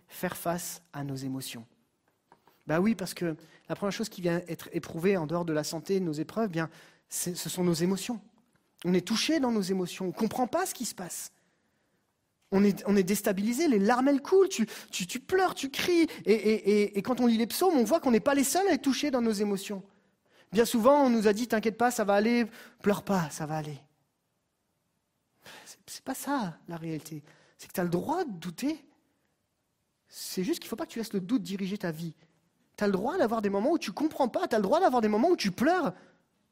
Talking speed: 245 wpm